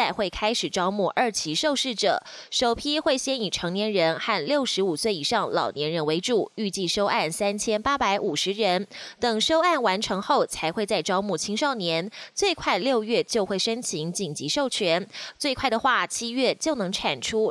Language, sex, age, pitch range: Chinese, female, 20-39, 185-260 Hz